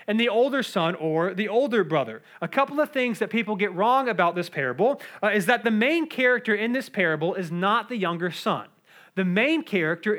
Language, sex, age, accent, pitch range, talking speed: English, male, 30-49, American, 175-230 Hz, 210 wpm